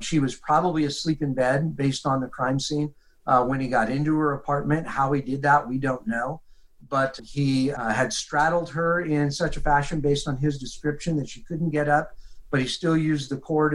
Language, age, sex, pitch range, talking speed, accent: English, 50-69, male, 135-155 Hz, 220 wpm, American